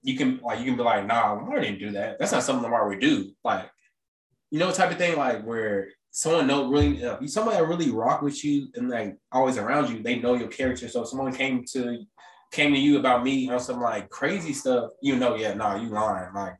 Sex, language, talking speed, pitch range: male, English, 250 wpm, 120-145 Hz